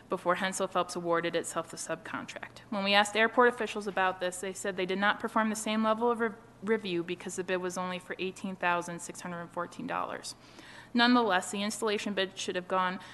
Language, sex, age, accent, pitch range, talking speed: English, female, 30-49, American, 175-215 Hz, 180 wpm